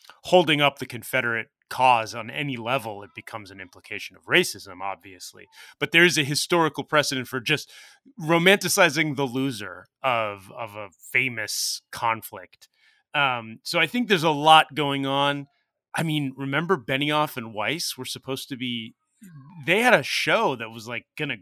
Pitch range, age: 115-155 Hz, 30-49